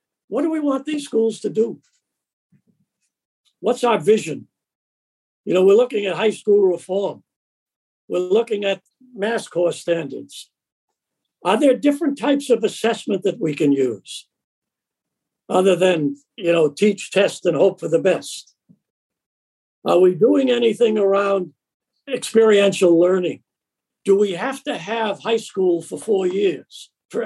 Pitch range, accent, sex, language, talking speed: 170-230 Hz, American, male, English, 140 wpm